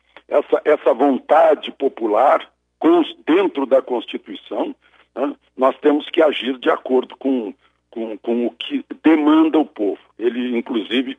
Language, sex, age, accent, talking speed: Portuguese, male, 60-79, Brazilian, 130 wpm